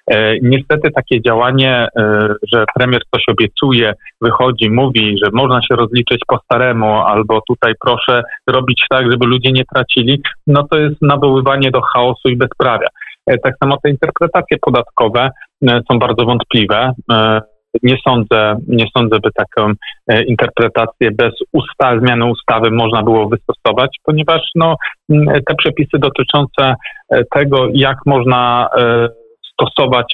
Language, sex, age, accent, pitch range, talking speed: Polish, male, 40-59, native, 115-145 Hz, 125 wpm